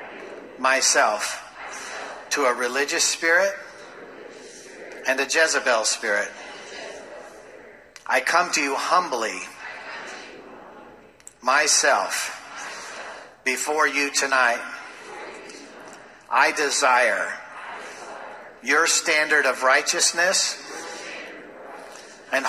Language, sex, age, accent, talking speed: English, male, 50-69, American, 65 wpm